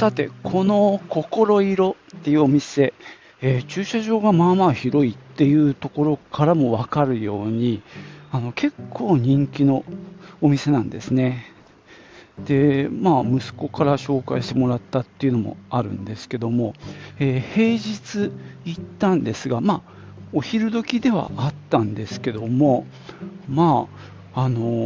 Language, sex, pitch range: Japanese, male, 115-175 Hz